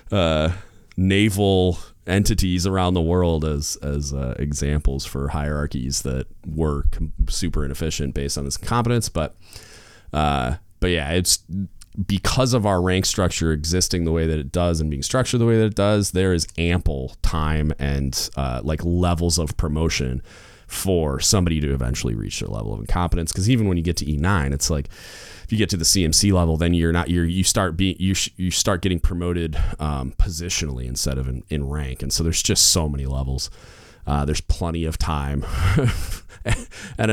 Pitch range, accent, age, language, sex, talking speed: 75-95 Hz, American, 30-49, English, male, 180 wpm